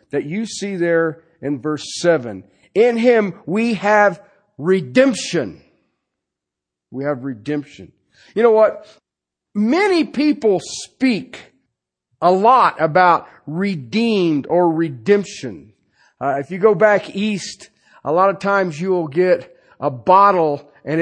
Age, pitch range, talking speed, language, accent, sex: 50-69, 145-200 Hz, 125 wpm, English, American, male